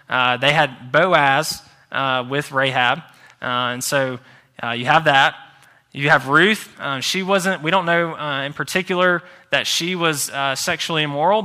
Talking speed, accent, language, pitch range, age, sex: 160 wpm, American, English, 130-165 Hz, 20-39, male